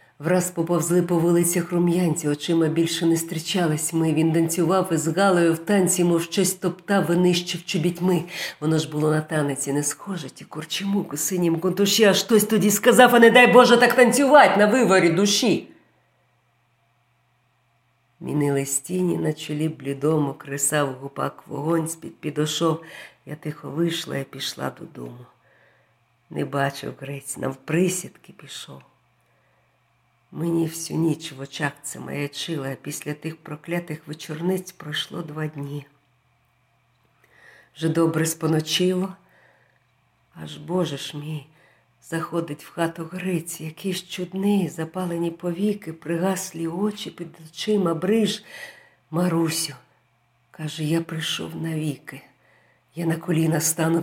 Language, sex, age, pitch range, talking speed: Ukrainian, female, 50-69, 145-180 Hz, 125 wpm